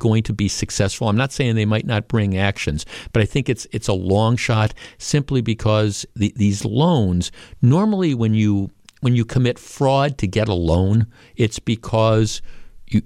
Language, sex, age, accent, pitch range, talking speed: English, male, 50-69, American, 105-130 Hz, 180 wpm